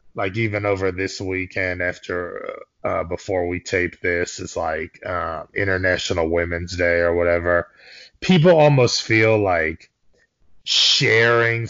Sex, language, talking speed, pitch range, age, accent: male, English, 125 wpm, 100-130 Hz, 30-49, American